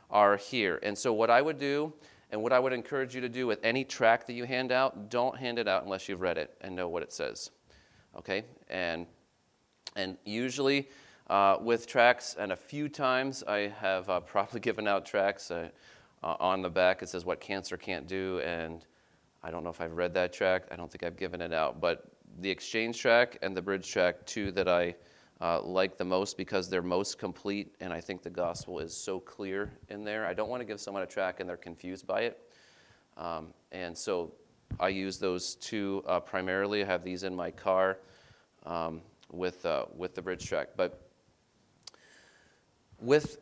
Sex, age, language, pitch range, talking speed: male, 30-49, English, 90-120 Hz, 205 wpm